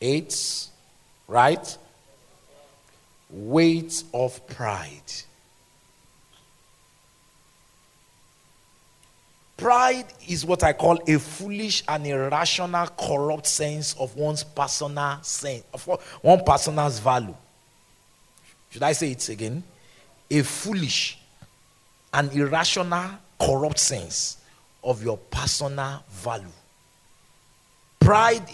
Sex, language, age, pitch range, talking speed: male, English, 50-69, 135-180 Hz, 85 wpm